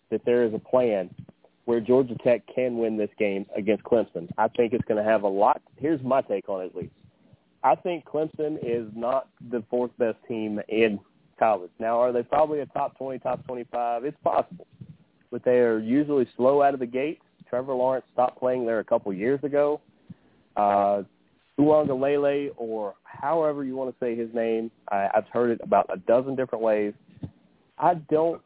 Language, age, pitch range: English, 30-49, 115-135 Hz